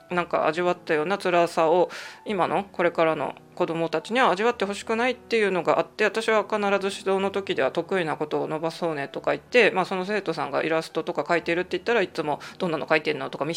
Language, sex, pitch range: Japanese, female, 160-200 Hz